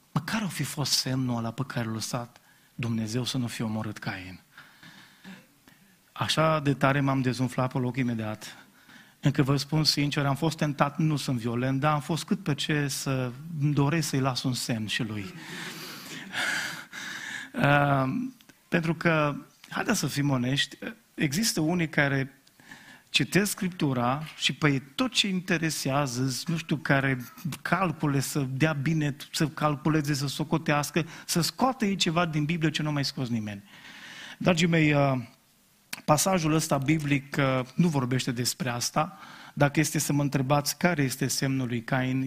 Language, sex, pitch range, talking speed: Romanian, male, 130-155 Hz, 150 wpm